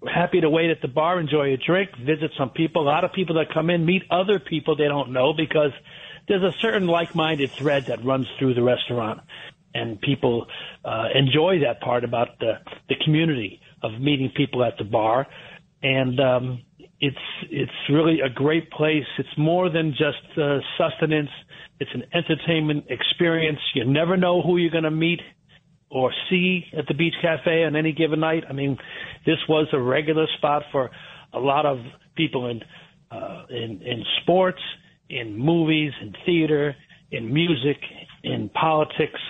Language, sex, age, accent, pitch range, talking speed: English, male, 50-69, American, 135-165 Hz, 175 wpm